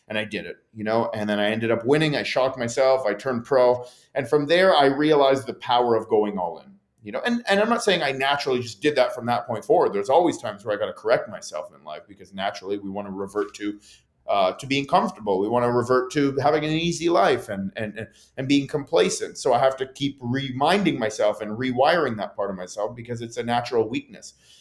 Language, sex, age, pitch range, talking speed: English, male, 40-59, 115-150 Hz, 240 wpm